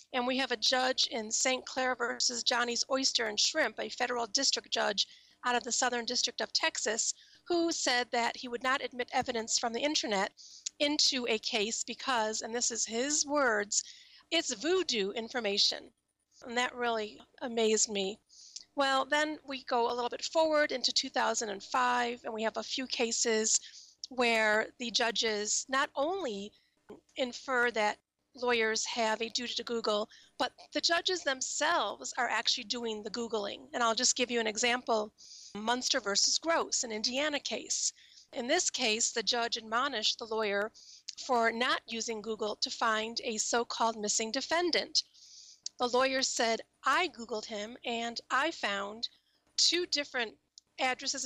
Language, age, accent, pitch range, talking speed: English, 40-59, American, 225-275 Hz, 155 wpm